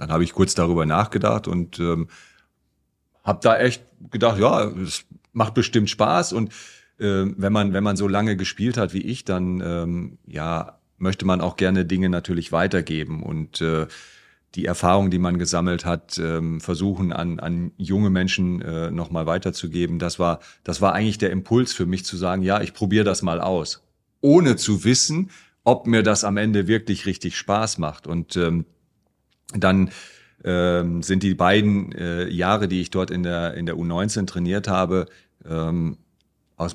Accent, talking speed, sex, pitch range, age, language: German, 175 wpm, male, 85-100 Hz, 40-59, German